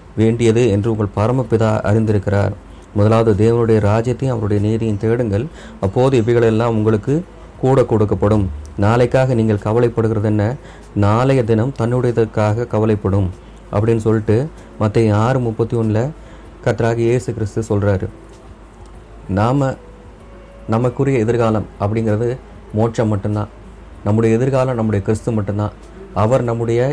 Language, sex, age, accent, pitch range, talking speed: Tamil, male, 30-49, native, 105-125 Hz, 100 wpm